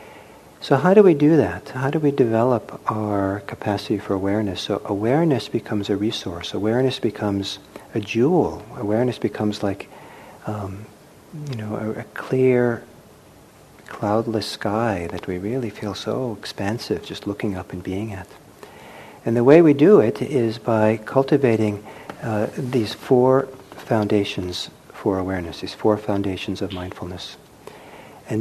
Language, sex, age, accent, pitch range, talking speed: English, male, 50-69, American, 100-130 Hz, 140 wpm